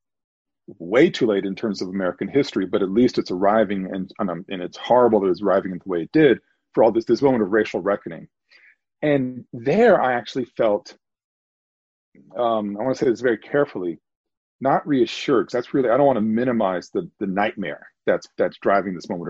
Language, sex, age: English, male, 40-59